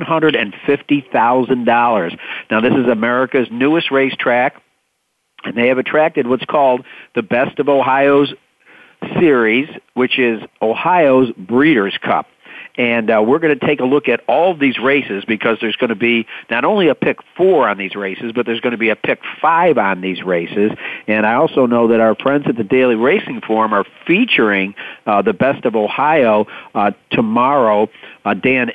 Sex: male